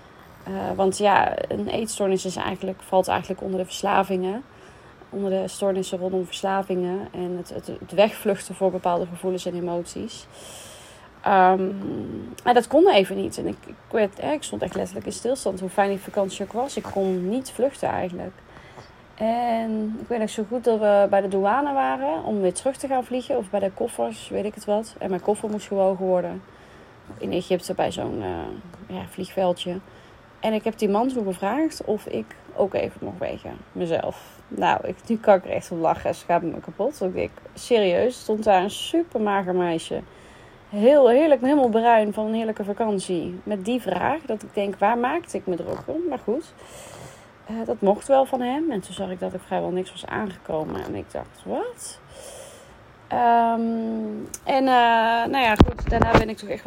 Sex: female